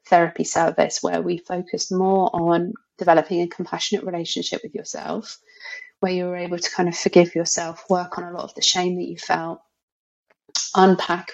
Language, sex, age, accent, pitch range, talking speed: English, female, 30-49, British, 175-210 Hz, 175 wpm